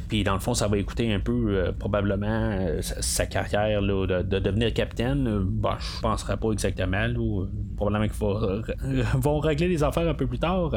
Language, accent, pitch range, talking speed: French, Canadian, 100-135 Hz, 225 wpm